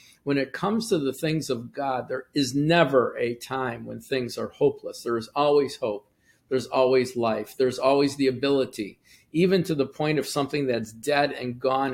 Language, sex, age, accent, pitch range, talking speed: English, male, 50-69, American, 125-155 Hz, 190 wpm